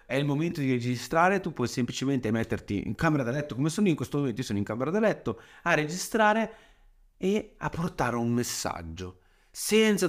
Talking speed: 195 wpm